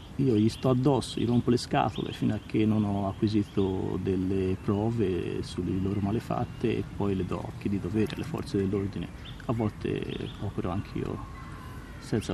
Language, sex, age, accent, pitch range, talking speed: Italian, male, 30-49, native, 95-115 Hz, 170 wpm